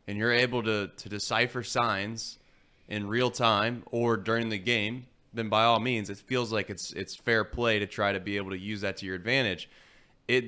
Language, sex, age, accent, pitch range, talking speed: English, male, 20-39, American, 105-135 Hz, 210 wpm